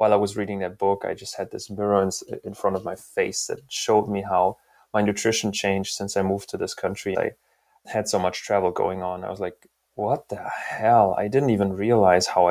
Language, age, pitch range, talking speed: English, 20-39, 100-115 Hz, 230 wpm